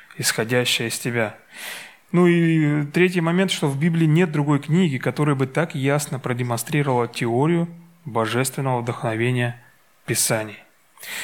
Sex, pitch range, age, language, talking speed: male, 125-165 Hz, 30-49, Russian, 115 wpm